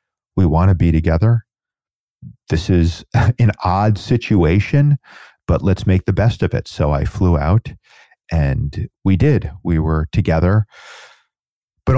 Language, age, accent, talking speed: English, 40-59, American, 140 wpm